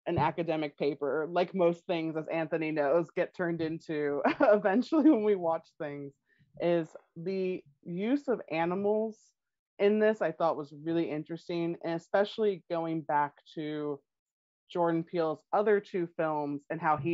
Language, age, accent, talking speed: English, 30-49, American, 145 wpm